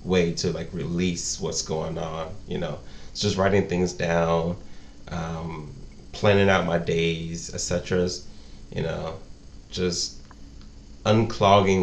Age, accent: 30-49, American